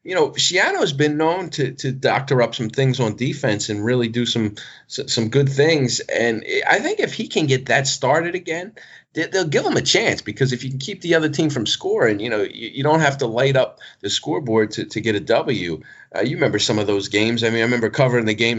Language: English